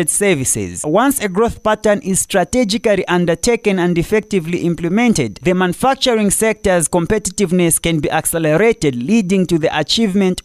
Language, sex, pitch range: English, male, 140-185 Hz